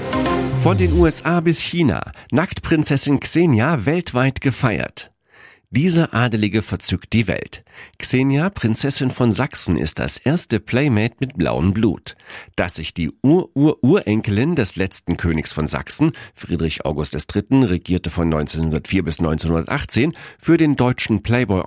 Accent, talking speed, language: German, 125 wpm, German